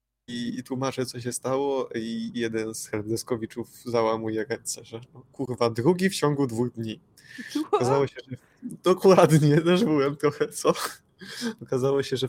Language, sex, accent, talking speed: Polish, male, native, 145 wpm